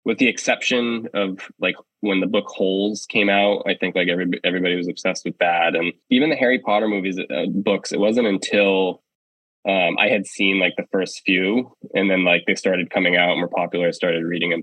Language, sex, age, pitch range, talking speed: English, male, 20-39, 90-100 Hz, 215 wpm